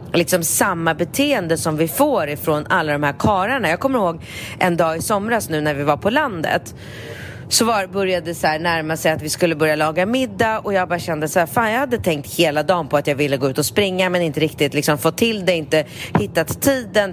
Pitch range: 155-225 Hz